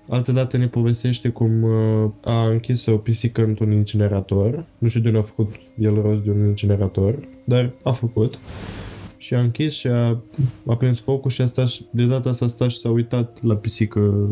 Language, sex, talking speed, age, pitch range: Romanian, male, 190 wpm, 20-39, 105-125 Hz